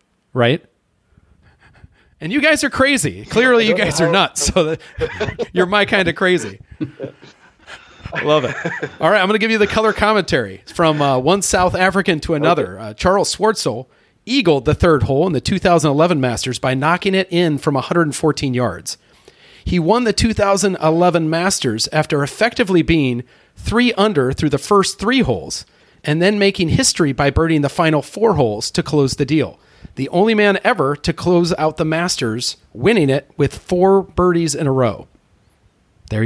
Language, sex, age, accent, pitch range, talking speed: English, male, 40-59, American, 140-185 Hz, 170 wpm